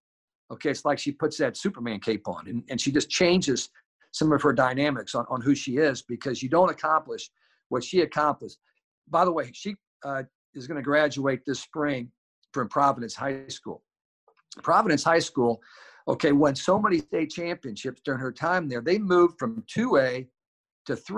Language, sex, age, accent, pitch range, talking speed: English, male, 50-69, American, 125-155 Hz, 180 wpm